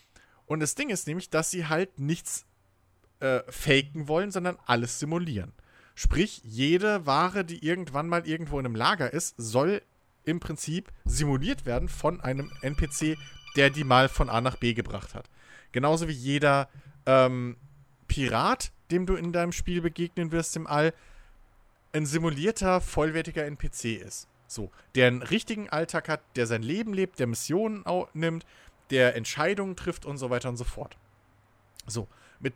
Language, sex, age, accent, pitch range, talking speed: German, male, 40-59, German, 120-165 Hz, 160 wpm